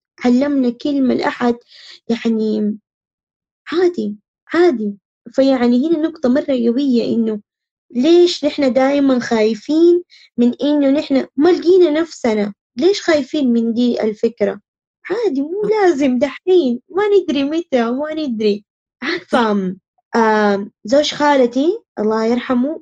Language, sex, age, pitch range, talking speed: Arabic, female, 20-39, 215-285 Hz, 105 wpm